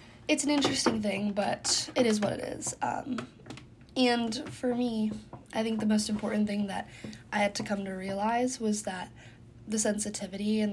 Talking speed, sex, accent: 180 wpm, female, American